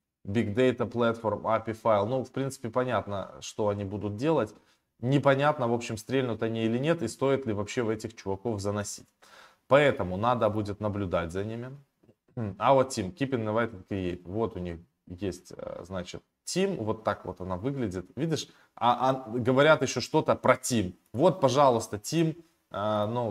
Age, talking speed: 20-39, 160 wpm